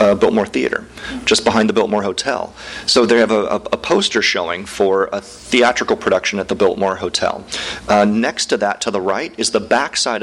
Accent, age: American, 40-59